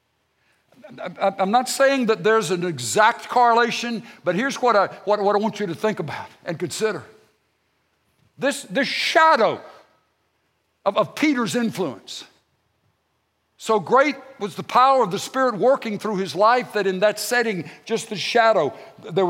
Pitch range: 180-240 Hz